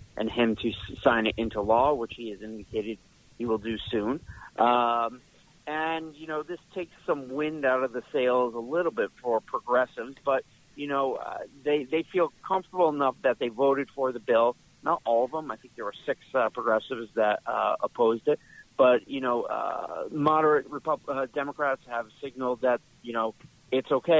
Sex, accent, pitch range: male, American, 115-140 Hz